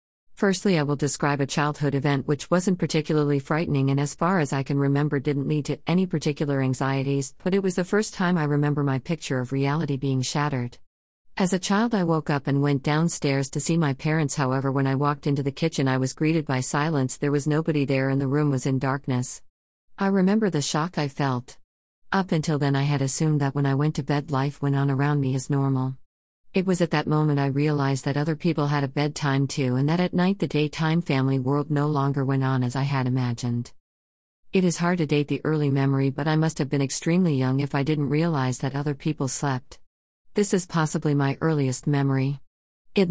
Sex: female